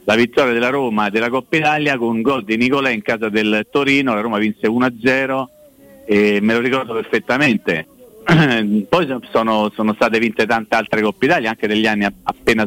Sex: male